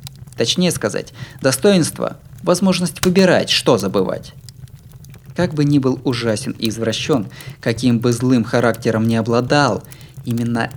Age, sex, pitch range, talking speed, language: 20-39, male, 120-140 Hz, 115 wpm, Russian